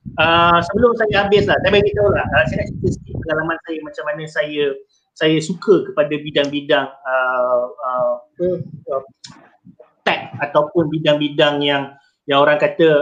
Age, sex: 30-49, male